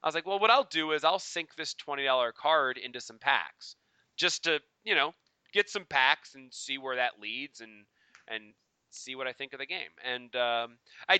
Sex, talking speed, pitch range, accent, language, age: male, 215 wpm, 105-140 Hz, American, English, 30-49